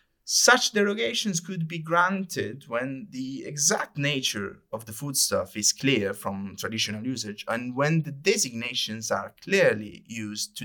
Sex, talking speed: male, 140 wpm